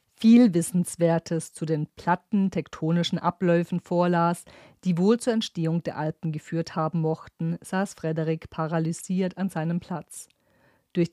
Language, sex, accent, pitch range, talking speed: German, female, German, 160-180 Hz, 130 wpm